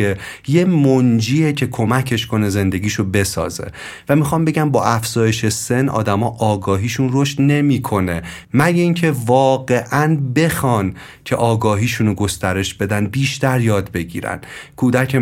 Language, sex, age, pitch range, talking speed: Persian, male, 30-49, 105-135 Hz, 115 wpm